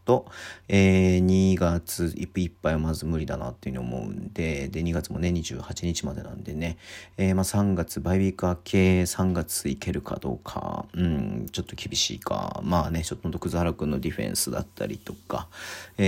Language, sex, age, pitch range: Japanese, male, 40-59, 85-105 Hz